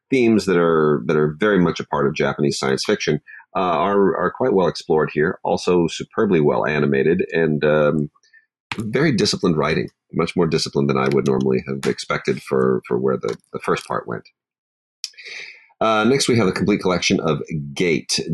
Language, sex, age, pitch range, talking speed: English, male, 40-59, 75-90 Hz, 180 wpm